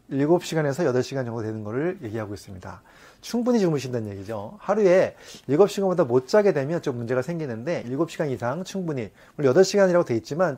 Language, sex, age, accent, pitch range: Korean, male, 30-49, native, 115-175 Hz